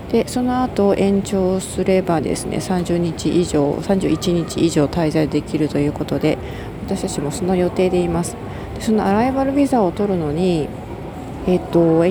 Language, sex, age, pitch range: Japanese, female, 40-59, 160-205 Hz